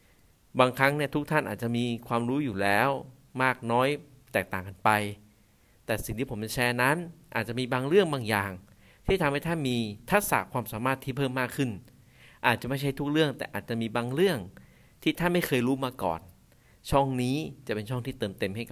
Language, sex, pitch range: Thai, male, 110-135 Hz